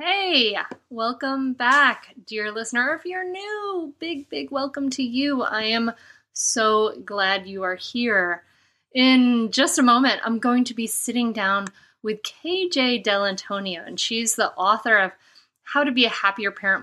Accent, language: American, English